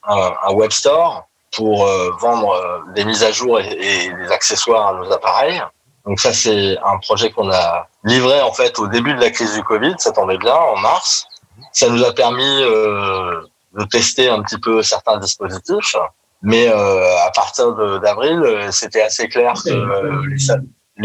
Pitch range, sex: 110-135 Hz, male